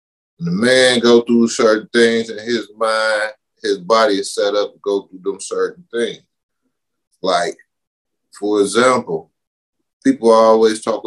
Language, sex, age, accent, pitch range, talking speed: English, male, 30-49, American, 100-140 Hz, 140 wpm